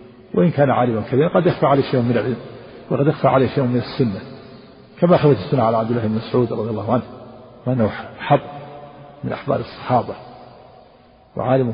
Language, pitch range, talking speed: Arabic, 115-135 Hz, 170 wpm